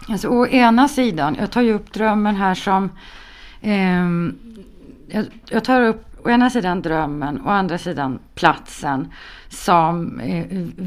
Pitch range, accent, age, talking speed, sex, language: 170-225 Hz, Swedish, 30-49, 140 wpm, female, Finnish